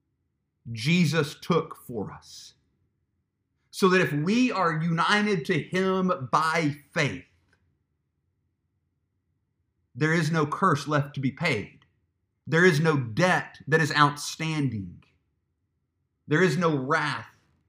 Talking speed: 110 wpm